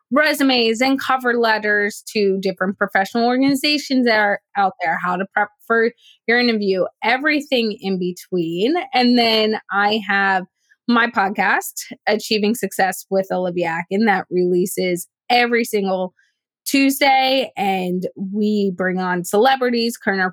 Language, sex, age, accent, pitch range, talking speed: English, female, 20-39, American, 195-235 Hz, 130 wpm